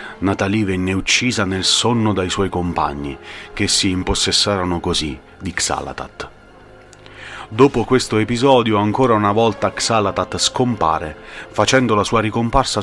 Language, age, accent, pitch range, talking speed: Italian, 30-49, native, 90-115 Hz, 120 wpm